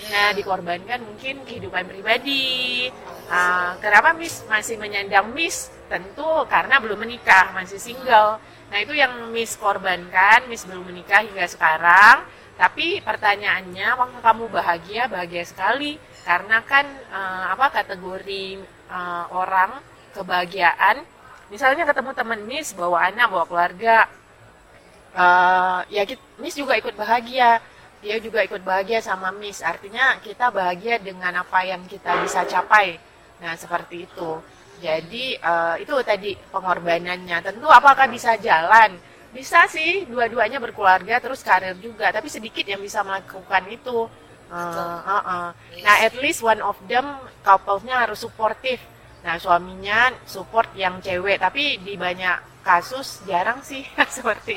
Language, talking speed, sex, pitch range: Indonesian, 135 wpm, female, 180-235 Hz